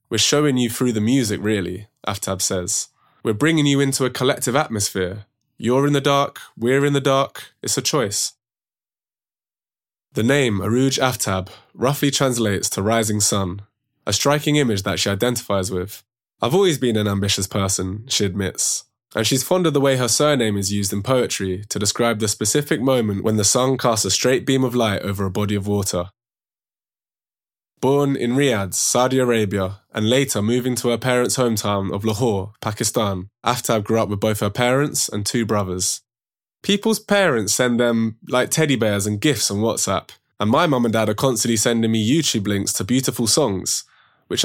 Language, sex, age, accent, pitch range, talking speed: English, male, 20-39, British, 105-135 Hz, 180 wpm